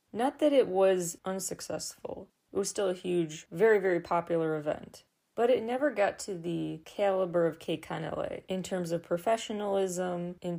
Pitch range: 165-205 Hz